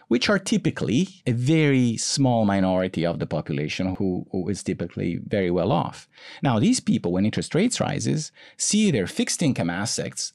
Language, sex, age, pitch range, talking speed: English, male, 40-59, 100-140 Hz, 170 wpm